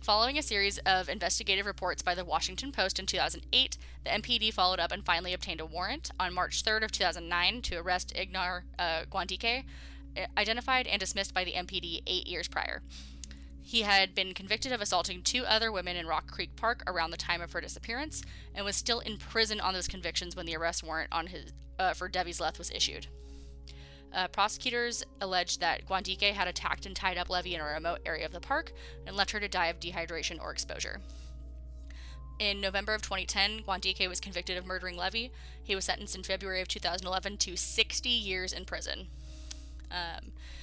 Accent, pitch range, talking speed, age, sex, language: American, 150-200 Hz, 185 wpm, 20-39, female, English